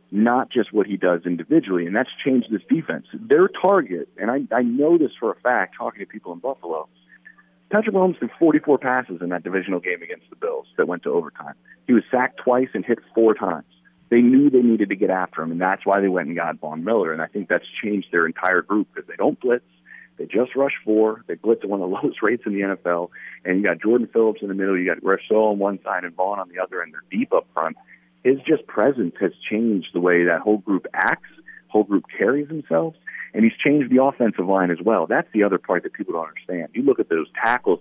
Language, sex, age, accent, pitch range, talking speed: English, male, 40-59, American, 90-130 Hz, 245 wpm